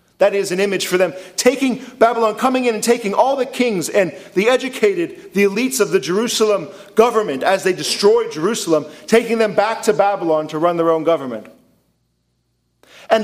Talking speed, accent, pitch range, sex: 175 wpm, American, 190-260 Hz, male